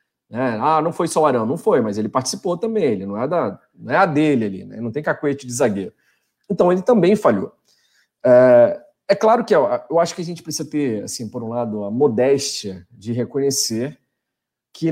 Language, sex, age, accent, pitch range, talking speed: Portuguese, male, 40-59, Brazilian, 130-195 Hz, 205 wpm